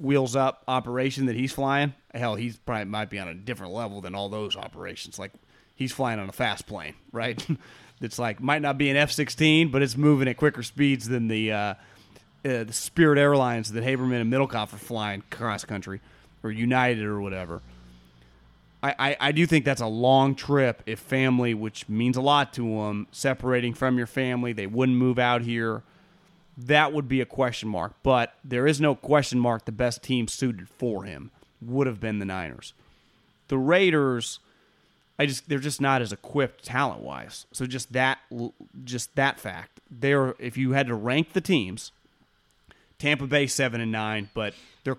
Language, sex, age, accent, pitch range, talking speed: English, male, 30-49, American, 110-140 Hz, 185 wpm